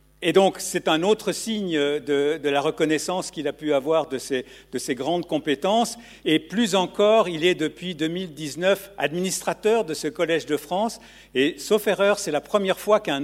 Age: 60-79